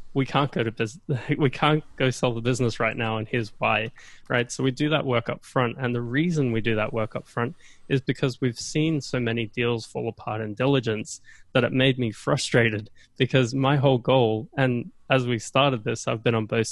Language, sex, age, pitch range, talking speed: English, male, 20-39, 115-135 Hz, 225 wpm